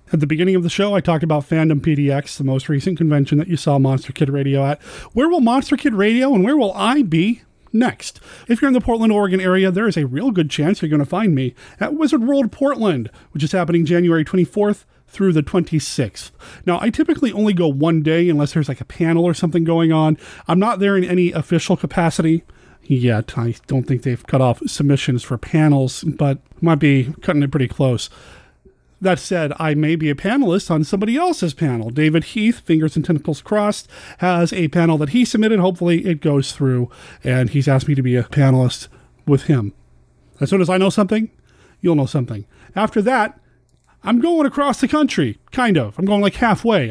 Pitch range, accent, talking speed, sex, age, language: 140-205 Hz, American, 205 wpm, male, 30-49, English